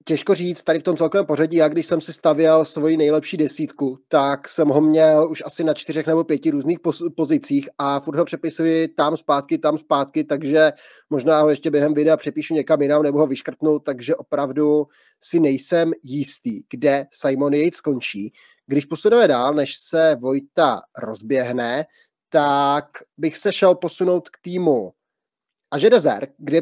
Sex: male